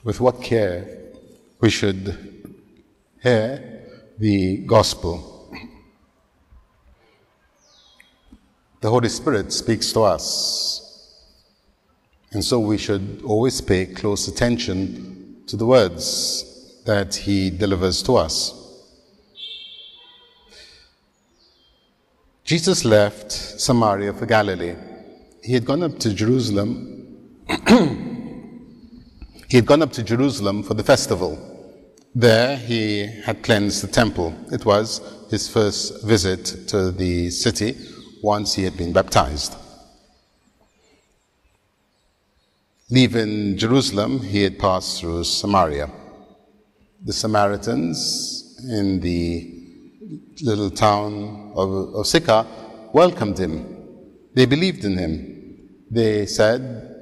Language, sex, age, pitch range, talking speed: English, male, 50-69, 95-120 Hz, 100 wpm